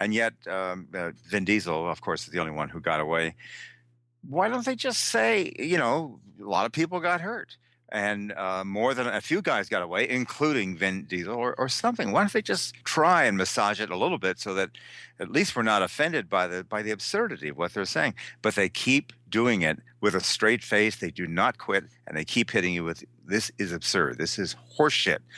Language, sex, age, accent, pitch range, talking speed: English, male, 50-69, American, 85-115 Hz, 225 wpm